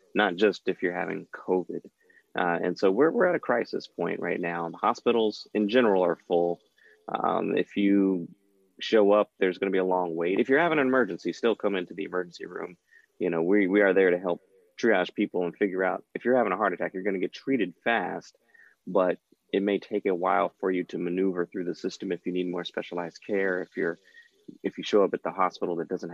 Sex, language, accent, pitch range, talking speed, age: male, English, American, 85-105 Hz, 230 wpm, 30-49